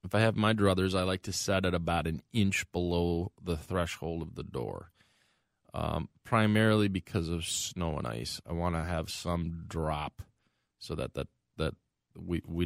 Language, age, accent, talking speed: English, 20-39, American, 180 wpm